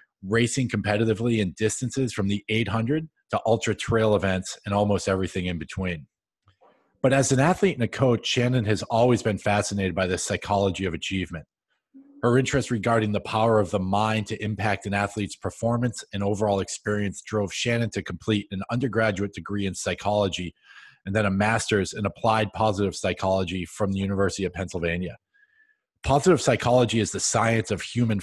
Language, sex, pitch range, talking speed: English, male, 95-115 Hz, 165 wpm